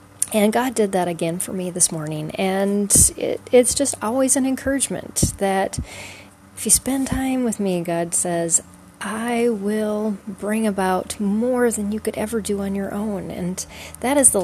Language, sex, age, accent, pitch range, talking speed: English, female, 30-49, American, 175-240 Hz, 175 wpm